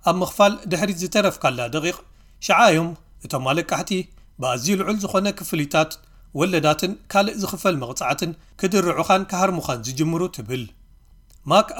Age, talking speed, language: 40-59, 120 wpm, Amharic